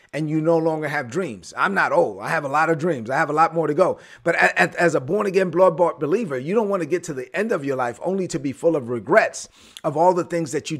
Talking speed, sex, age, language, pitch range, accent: 285 wpm, male, 30-49, English, 150-180 Hz, American